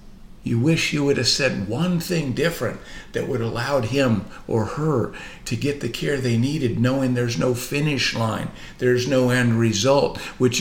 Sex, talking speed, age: male, 175 wpm, 50-69